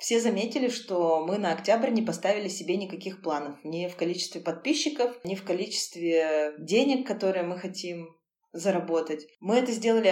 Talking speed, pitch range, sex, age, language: 155 wpm, 165-200 Hz, female, 20-39, Russian